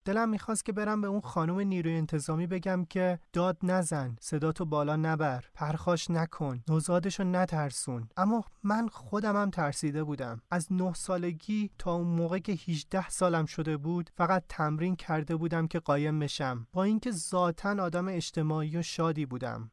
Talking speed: 160 wpm